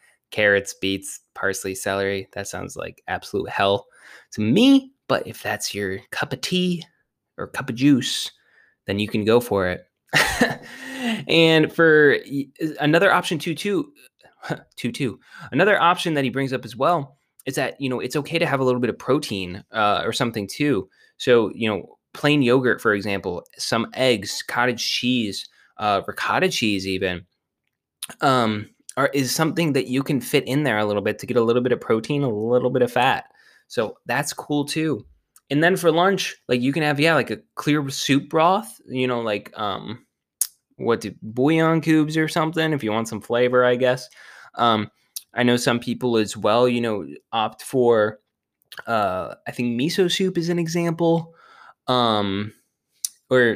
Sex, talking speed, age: male, 175 wpm, 20-39